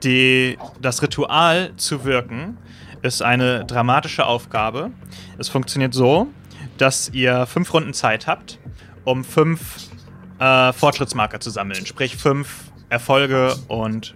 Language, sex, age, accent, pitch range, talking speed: German, male, 30-49, German, 115-140 Hz, 120 wpm